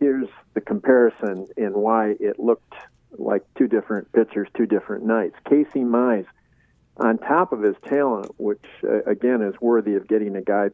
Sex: male